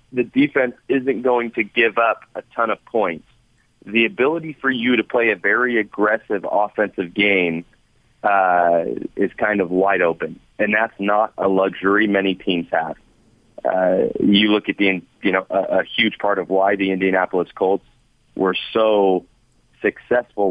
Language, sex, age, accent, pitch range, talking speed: English, male, 30-49, American, 95-110 Hz, 160 wpm